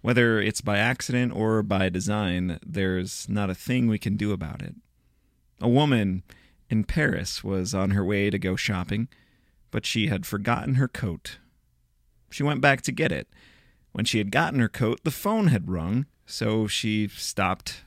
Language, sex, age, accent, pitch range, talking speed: English, male, 30-49, American, 100-130 Hz, 175 wpm